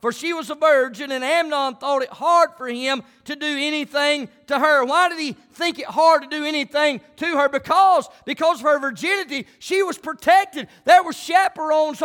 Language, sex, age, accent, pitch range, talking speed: English, male, 40-59, American, 270-320 Hz, 195 wpm